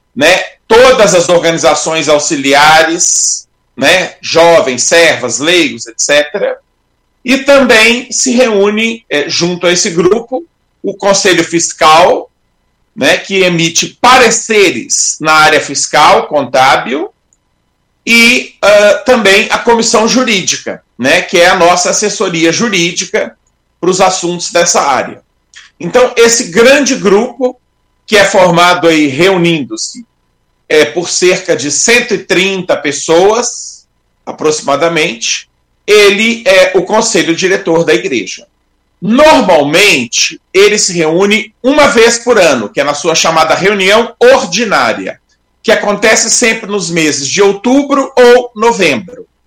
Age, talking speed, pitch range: 40-59, 110 wpm, 165-230 Hz